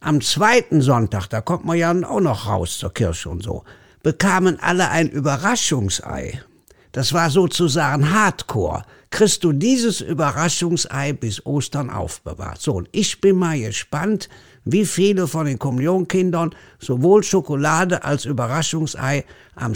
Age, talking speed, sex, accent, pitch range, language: 60-79, 135 wpm, male, German, 125-180 Hz, German